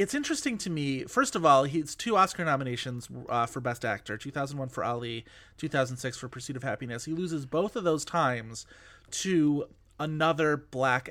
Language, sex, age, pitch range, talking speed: English, male, 30-49, 115-155 Hz, 175 wpm